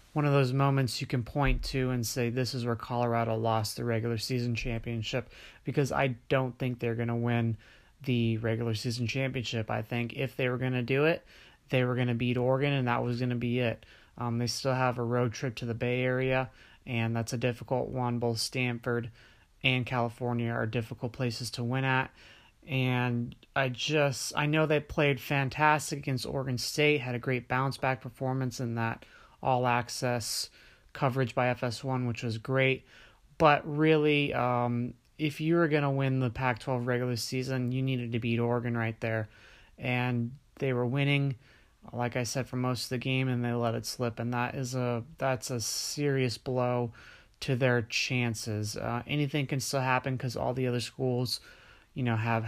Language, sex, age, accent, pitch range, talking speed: English, male, 30-49, American, 120-130 Hz, 185 wpm